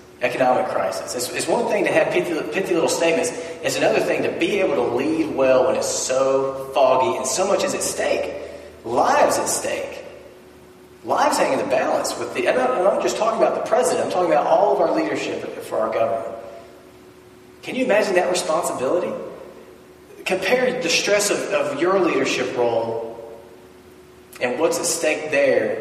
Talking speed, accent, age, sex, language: 185 wpm, American, 30-49, male, English